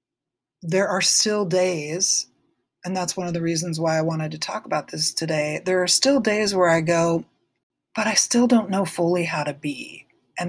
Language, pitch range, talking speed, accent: English, 155-185 Hz, 200 wpm, American